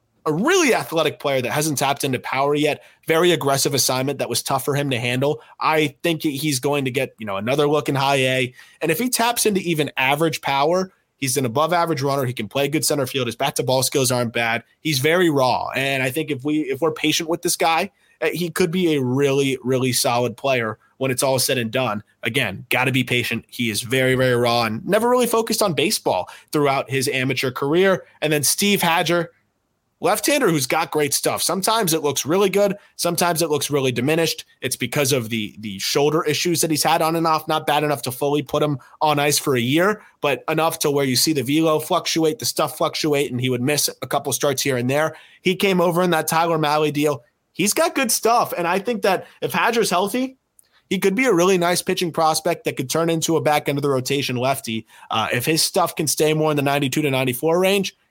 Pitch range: 135-165 Hz